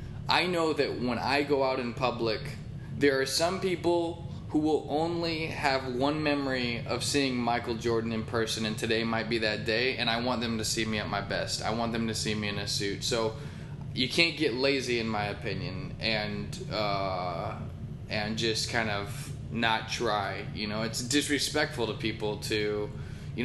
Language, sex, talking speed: English, male, 190 wpm